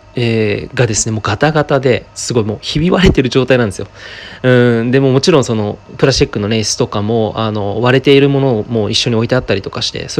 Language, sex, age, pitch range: Japanese, male, 20-39, 110-140 Hz